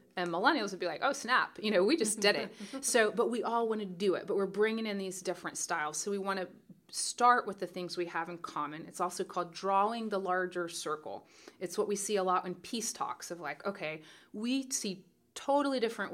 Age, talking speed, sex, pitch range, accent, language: 30-49, 235 wpm, female, 175-215 Hz, American, English